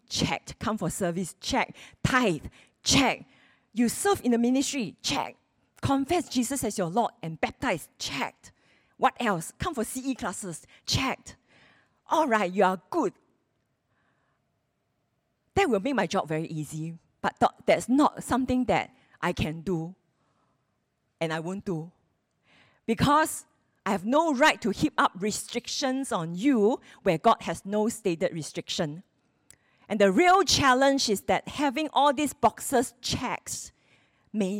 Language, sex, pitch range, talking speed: English, female, 175-255 Hz, 140 wpm